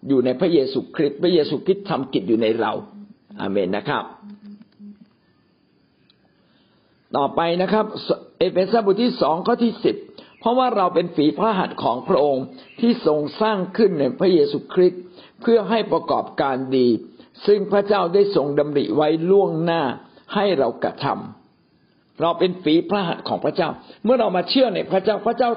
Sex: male